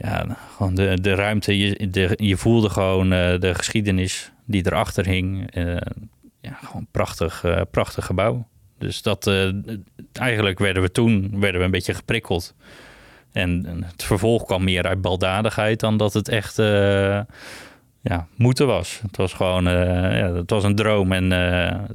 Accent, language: Dutch, English